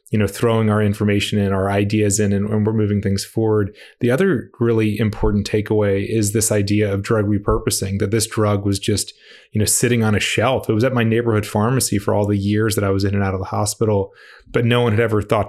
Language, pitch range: English, 105-120 Hz